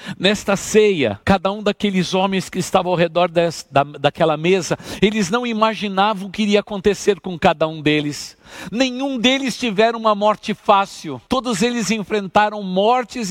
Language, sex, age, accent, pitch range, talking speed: Portuguese, male, 50-69, Brazilian, 175-220 Hz, 150 wpm